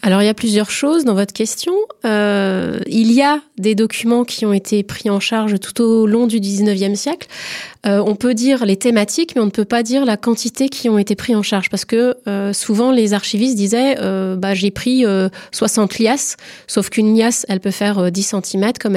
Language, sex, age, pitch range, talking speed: French, female, 30-49, 200-240 Hz, 225 wpm